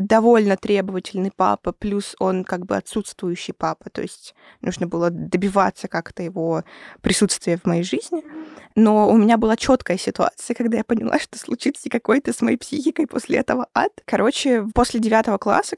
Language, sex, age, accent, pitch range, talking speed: Russian, female, 20-39, native, 200-240 Hz, 160 wpm